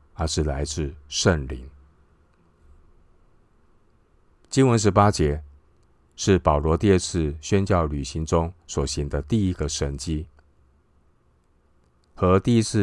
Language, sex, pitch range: Chinese, male, 70-85 Hz